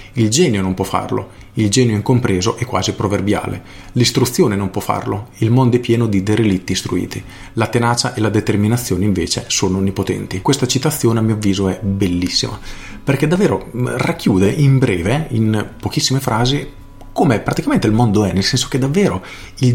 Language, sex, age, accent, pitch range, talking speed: Italian, male, 40-59, native, 100-125 Hz, 165 wpm